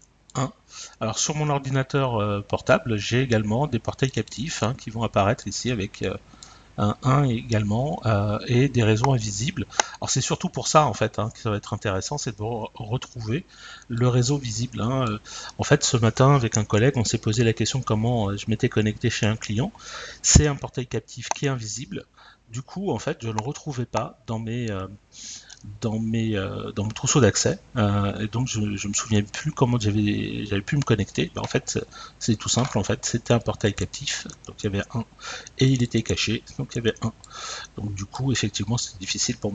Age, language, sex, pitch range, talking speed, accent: 40-59, French, male, 105-130 Hz, 210 wpm, French